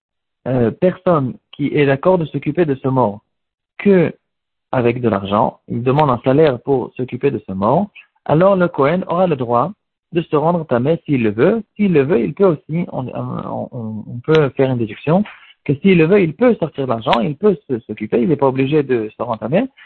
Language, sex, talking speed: French, male, 210 wpm